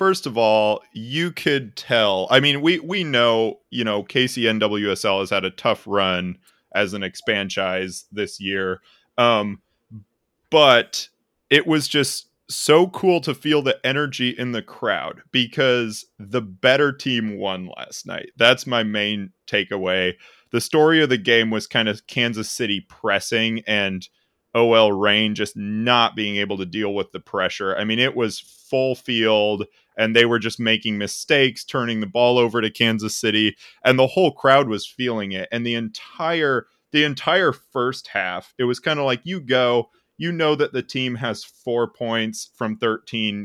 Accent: American